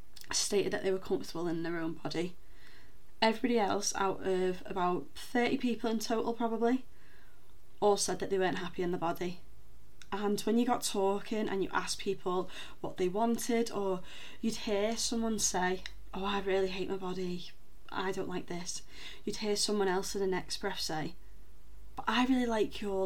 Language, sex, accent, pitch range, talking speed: English, female, British, 185-225 Hz, 180 wpm